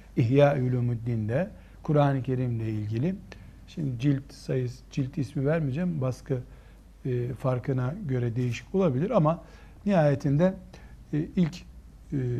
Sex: male